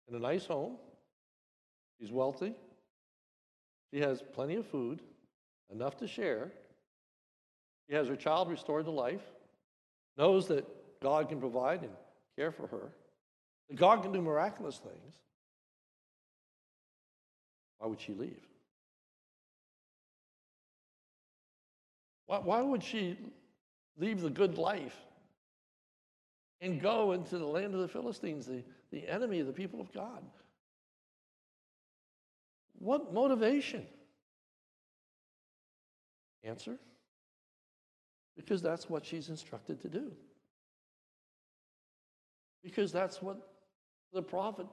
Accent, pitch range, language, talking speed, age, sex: American, 160-235 Hz, English, 105 wpm, 60-79, male